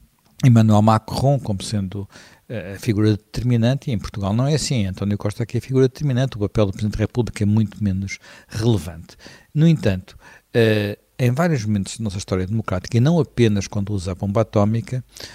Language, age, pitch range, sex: Portuguese, 60-79, 105-130 Hz, male